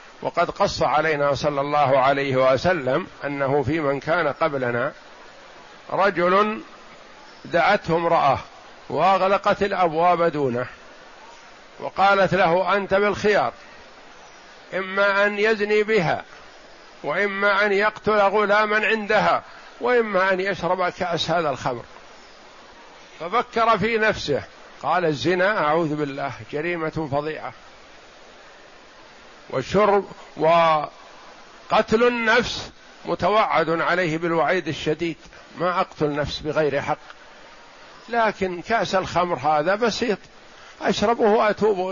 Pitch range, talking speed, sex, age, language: 155-200 Hz, 95 wpm, male, 50-69, Arabic